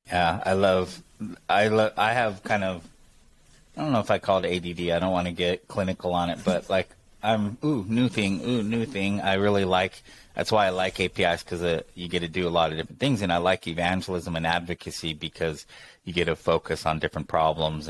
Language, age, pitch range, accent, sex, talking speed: English, 30-49, 85-100 Hz, American, male, 225 wpm